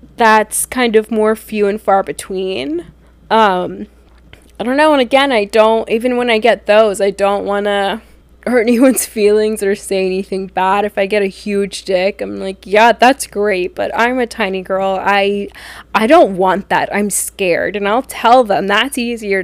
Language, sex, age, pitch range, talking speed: English, female, 20-39, 195-255 Hz, 190 wpm